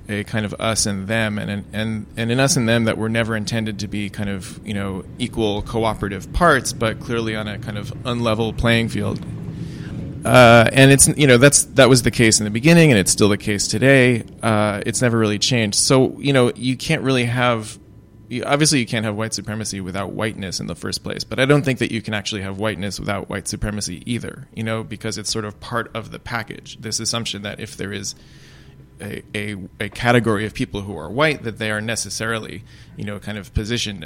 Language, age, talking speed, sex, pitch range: English, 20-39, 220 wpm, male, 105-125 Hz